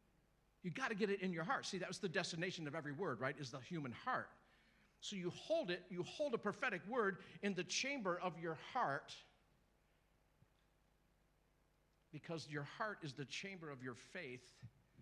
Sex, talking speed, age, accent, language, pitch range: male, 180 wpm, 50-69, American, English, 150-225 Hz